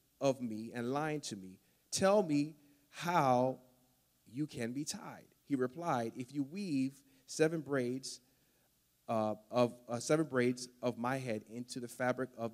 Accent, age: American, 30-49